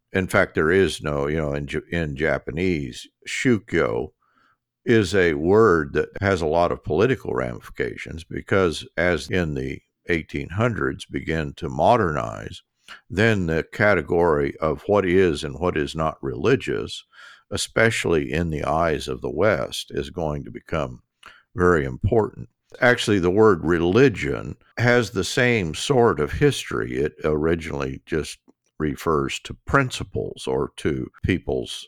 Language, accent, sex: English, American, male